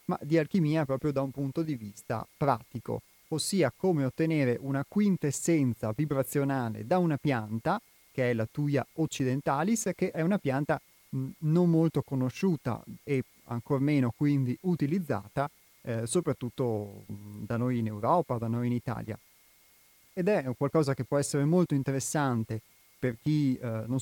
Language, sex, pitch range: Italian, male, 120-145 Hz